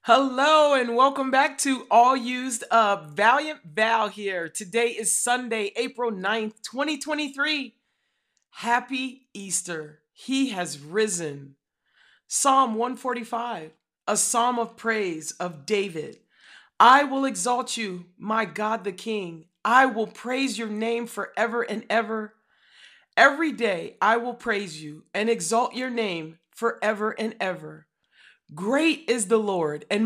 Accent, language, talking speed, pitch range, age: American, English, 130 wpm, 200-250 Hz, 40-59